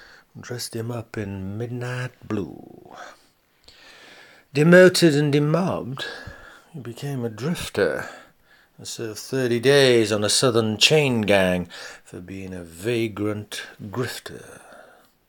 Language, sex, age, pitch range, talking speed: English, male, 60-79, 105-150 Hz, 105 wpm